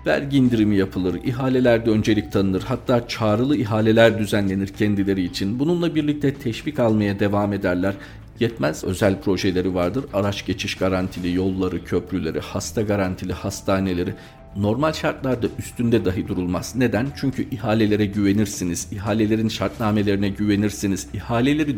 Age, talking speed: 50-69, 120 wpm